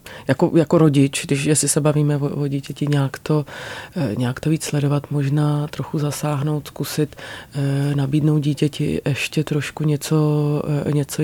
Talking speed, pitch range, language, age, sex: 130 wpm, 140-150 Hz, Czech, 30-49, female